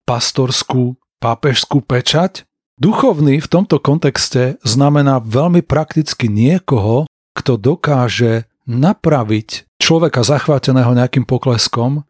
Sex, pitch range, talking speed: male, 120-145 Hz, 90 wpm